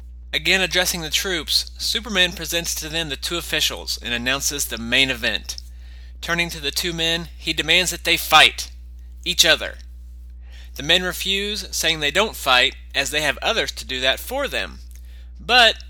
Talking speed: 170 wpm